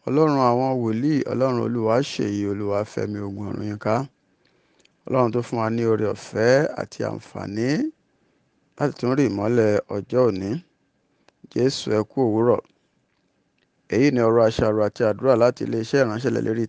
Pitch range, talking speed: 110-130 Hz, 135 wpm